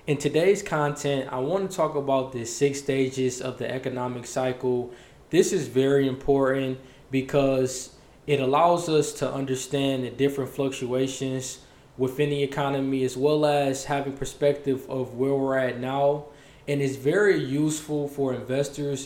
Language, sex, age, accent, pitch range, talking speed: English, male, 20-39, American, 130-145 Hz, 150 wpm